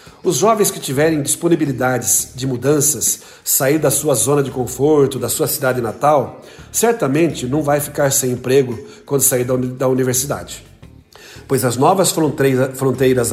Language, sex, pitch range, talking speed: Portuguese, male, 130-165 Hz, 145 wpm